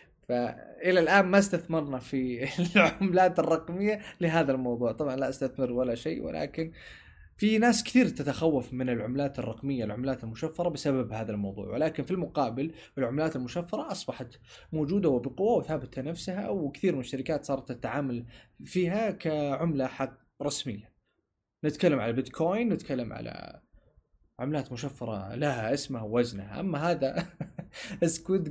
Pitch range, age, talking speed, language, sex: 125-170 Hz, 20-39, 125 wpm, Arabic, male